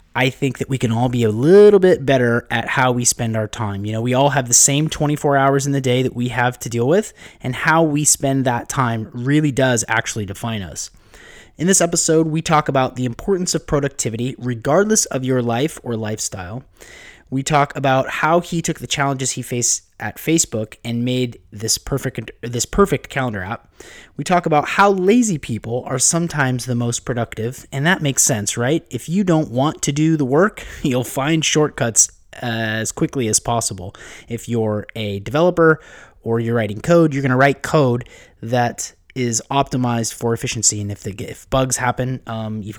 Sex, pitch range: male, 115-145 Hz